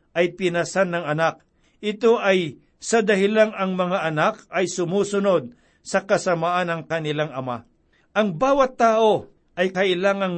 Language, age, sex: Filipino, 60-79, male